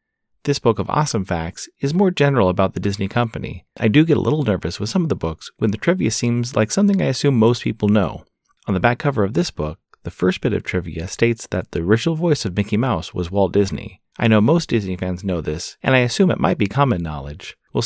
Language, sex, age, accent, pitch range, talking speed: English, male, 30-49, American, 95-120 Hz, 245 wpm